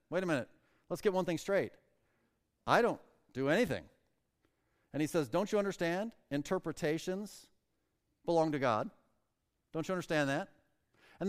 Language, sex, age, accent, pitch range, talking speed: English, male, 40-59, American, 170-230 Hz, 145 wpm